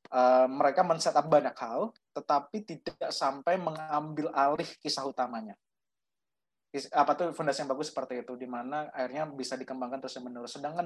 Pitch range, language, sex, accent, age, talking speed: 130-165 Hz, Indonesian, male, native, 20-39, 155 wpm